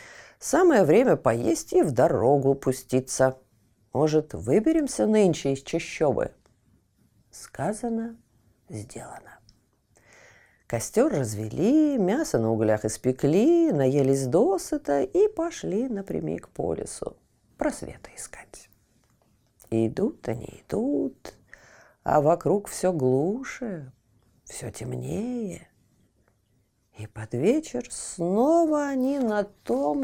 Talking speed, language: 90 wpm, Russian